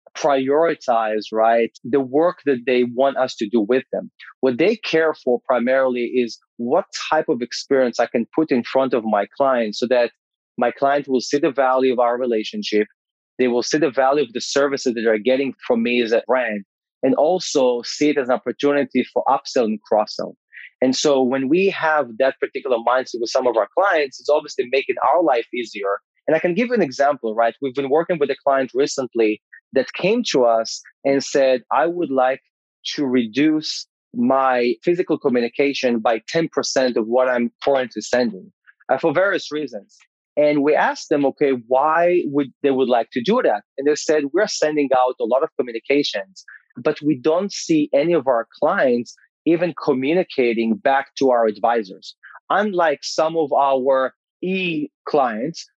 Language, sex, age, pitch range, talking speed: English, male, 20-39, 120-155 Hz, 185 wpm